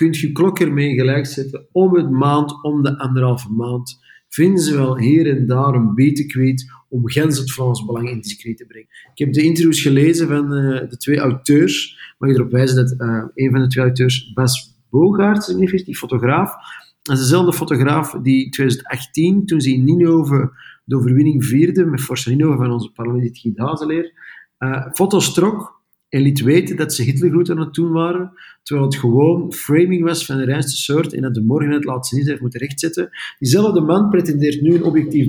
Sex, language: male, Dutch